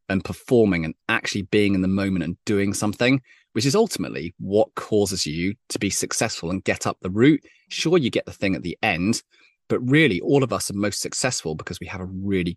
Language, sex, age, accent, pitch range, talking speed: English, male, 30-49, British, 90-115 Hz, 220 wpm